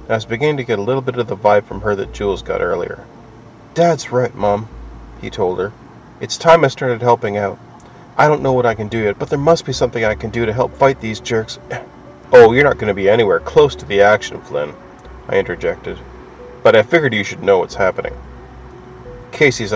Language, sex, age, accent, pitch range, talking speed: English, male, 40-59, American, 105-145 Hz, 220 wpm